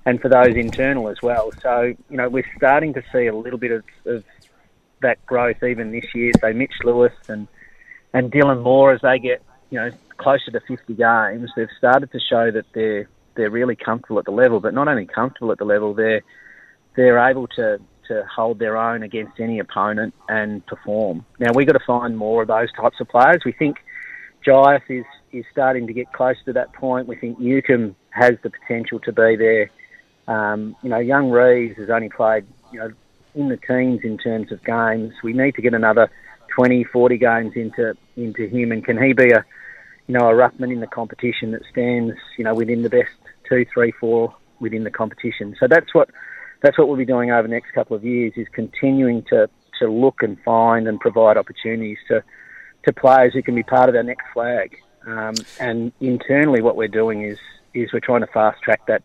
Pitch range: 115-125 Hz